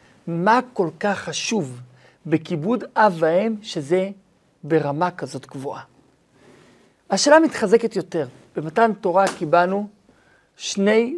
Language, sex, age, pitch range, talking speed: Hebrew, male, 50-69, 150-215 Hz, 95 wpm